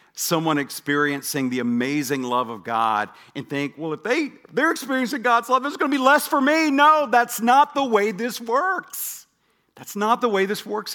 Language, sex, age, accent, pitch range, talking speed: English, male, 50-69, American, 155-220 Hz, 190 wpm